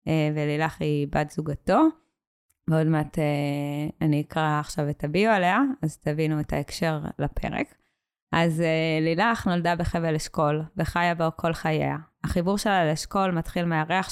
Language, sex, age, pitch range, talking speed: Hebrew, female, 20-39, 155-180 Hz, 145 wpm